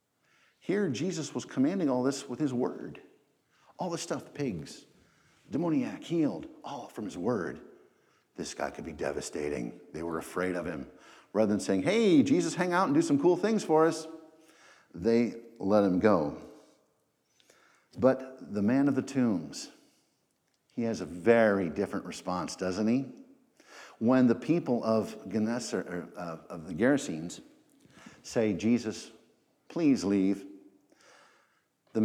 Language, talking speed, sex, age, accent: English, 135 wpm, male, 50-69, American